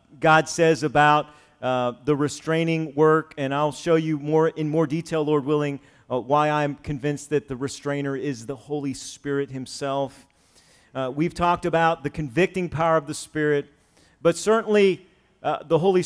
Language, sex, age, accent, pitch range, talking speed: English, male, 40-59, American, 145-170 Hz, 165 wpm